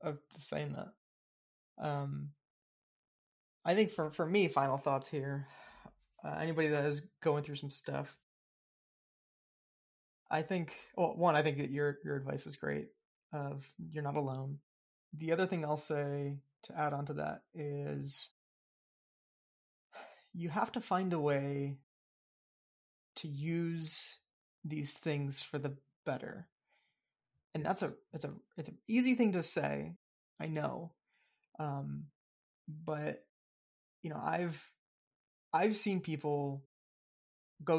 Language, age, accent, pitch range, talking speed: English, 20-39, American, 140-165 Hz, 130 wpm